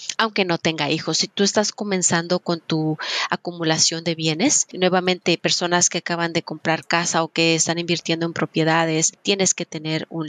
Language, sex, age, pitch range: Spanish, female, 30-49, 160-185 Hz